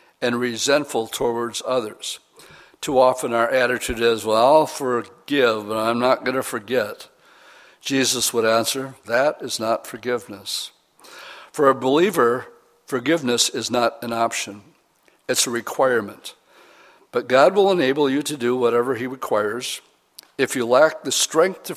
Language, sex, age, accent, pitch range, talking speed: English, male, 60-79, American, 115-140 Hz, 145 wpm